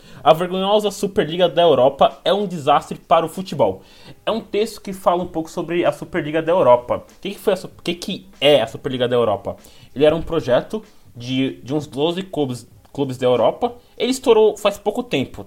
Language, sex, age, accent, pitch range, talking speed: Portuguese, male, 20-39, Brazilian, 130-175 Hz, 195 wpm